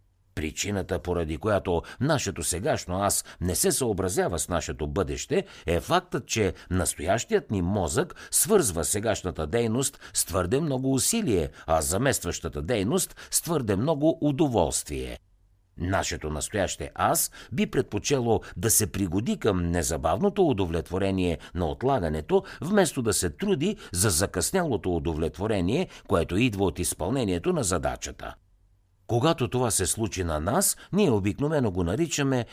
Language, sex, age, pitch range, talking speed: Bulgarian, male, 60-79, 85-130 Hz, 125 wpm